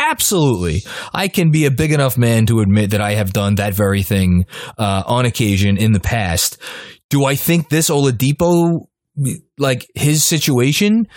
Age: 20-39